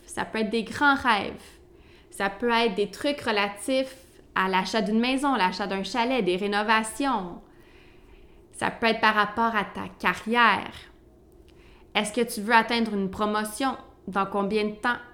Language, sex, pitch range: English, female, 200-240 Hz